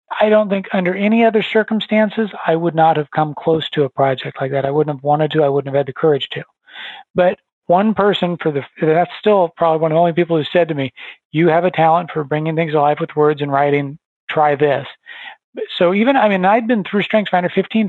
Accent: American